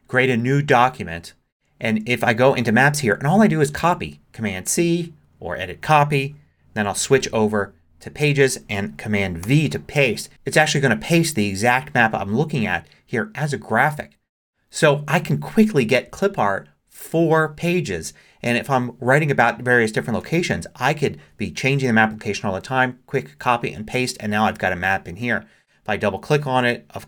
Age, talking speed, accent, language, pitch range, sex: 30-49, 210 wpm, American, English, 100-135 Hz, male